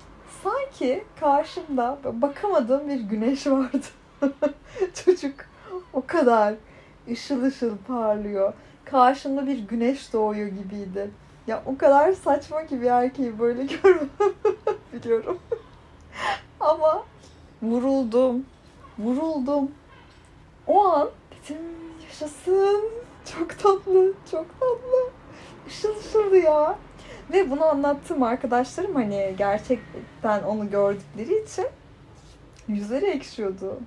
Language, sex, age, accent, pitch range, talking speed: Turkish, female, 30-49, native, 225-310 Hz, 90 wpm